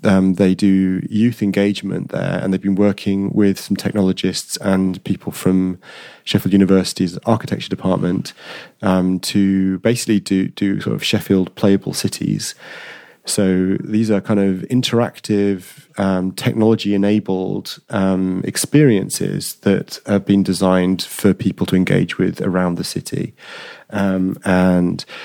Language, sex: English, male